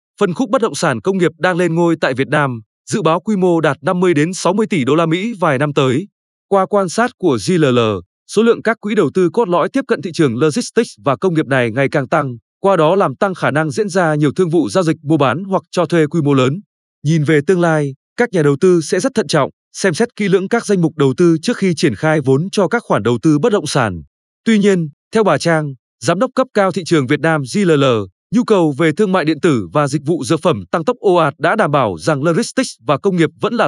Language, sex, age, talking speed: Vietnamese, male, 20-39, 260 wpm